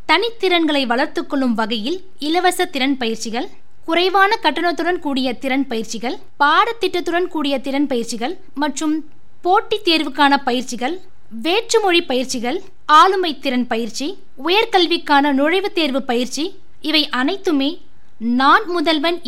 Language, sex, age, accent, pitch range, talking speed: Tamil, female, 20-39, native, 265-360 Hz, 100 wpm